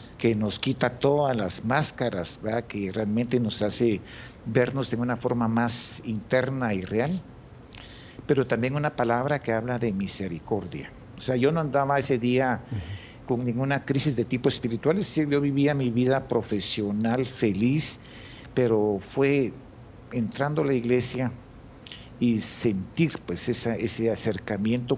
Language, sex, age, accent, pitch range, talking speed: Spanish, male, 50-69, Mexican, 115-135 Hz, 140 wpm